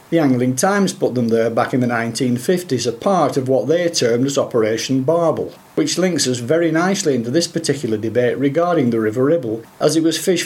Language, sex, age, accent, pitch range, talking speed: English, male, 50-69, British, 125-165 Hz, 205 wpm